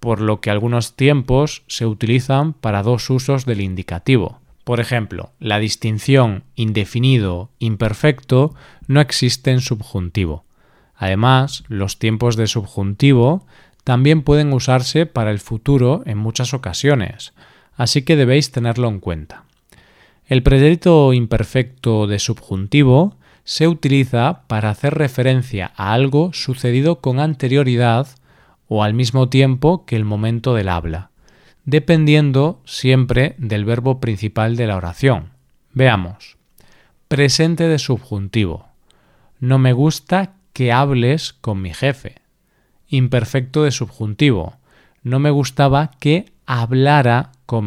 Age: 20-39